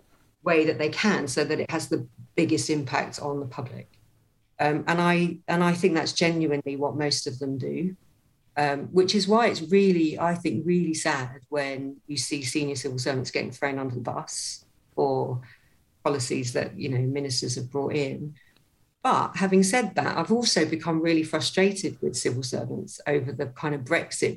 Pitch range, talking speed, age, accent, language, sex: 140-170 Hz, 180 wpm, 50-69, British, English, female